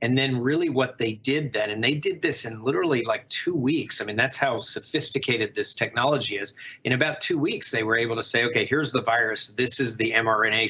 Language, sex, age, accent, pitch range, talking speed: English, male, 40-59, American, 110-130 Hz, 230 wpm